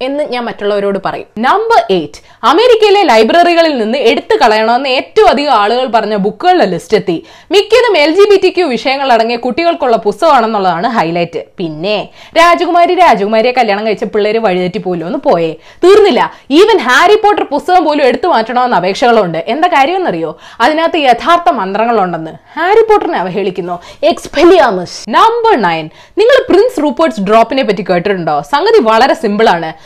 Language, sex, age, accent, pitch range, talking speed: Malayalam, female, 20-39, native, 215-345 Hz, 130 wpm